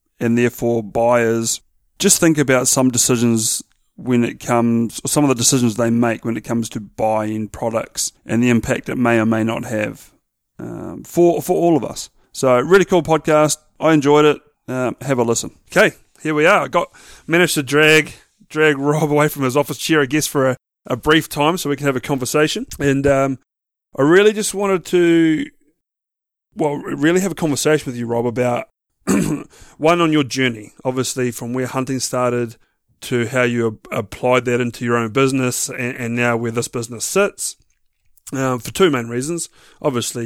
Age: 30-49